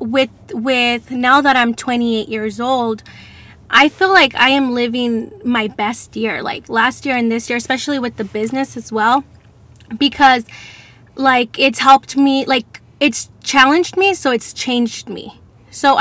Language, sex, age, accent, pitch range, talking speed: English, female, 10-29, American, 225-265 Hz, 160 wpm